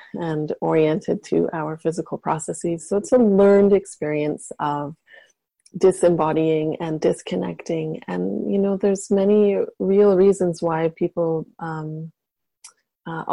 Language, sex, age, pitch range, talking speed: English, female, 30-49, 165-200 Hz, 115 wpm